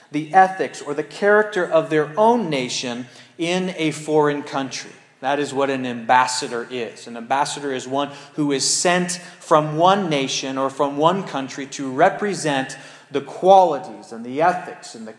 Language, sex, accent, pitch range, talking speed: English, male, American, 130-170 Hz, 160 wpm